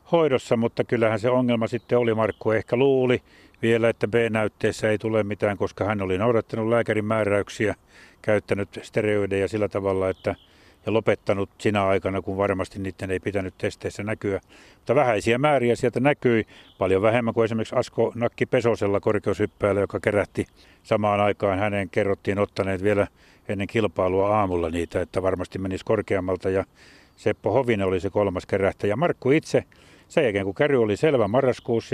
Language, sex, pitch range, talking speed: Finnish, male, 95-115 Hz, 155 wpm